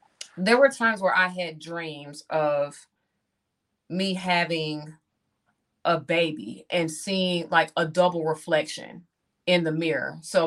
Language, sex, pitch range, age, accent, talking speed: English, female, 155-180 Hz, 30-49, American, 125 wpm